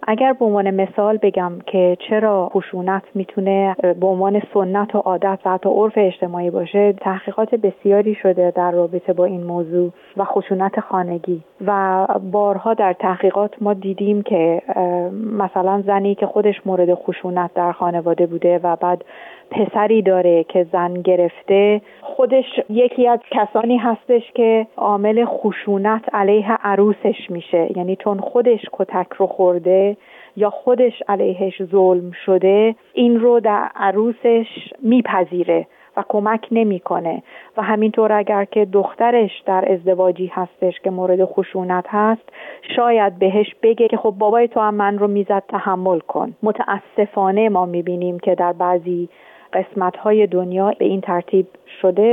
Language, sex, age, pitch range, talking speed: Persian, female, 40-59, 180-210 Hz, 135 wpm